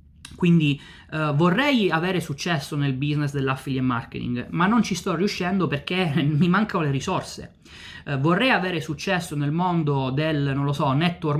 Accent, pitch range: native, 140-175 Hz